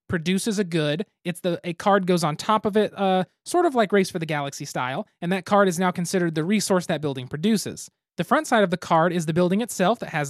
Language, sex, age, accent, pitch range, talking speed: English, male, 30-49, American, 160-205 Hz, 255 wpm